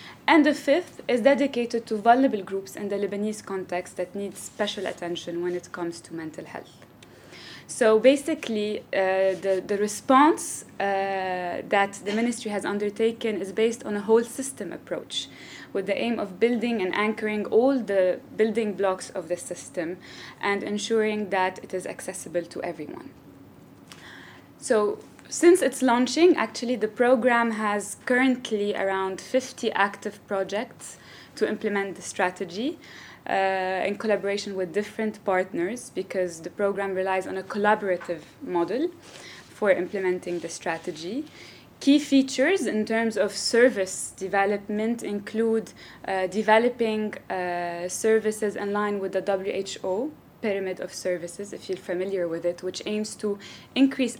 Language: English